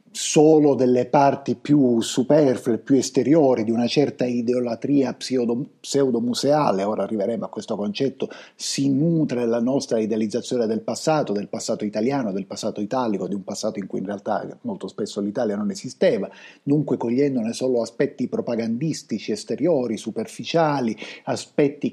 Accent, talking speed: native, 140 wpm